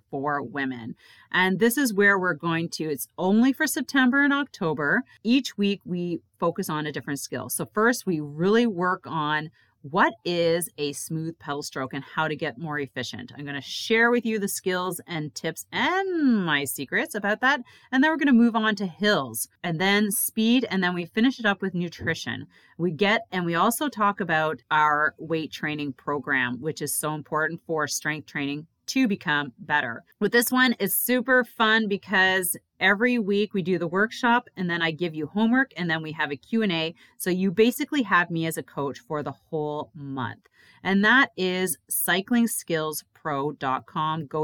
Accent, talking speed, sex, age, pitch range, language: American, 190 wpm, female, 30-49, 150-215 Hz, English